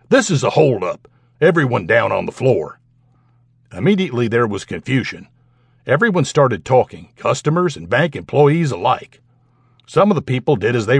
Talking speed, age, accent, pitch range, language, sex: 155 wpm, 60-79, American, 125-145 Hz, English, male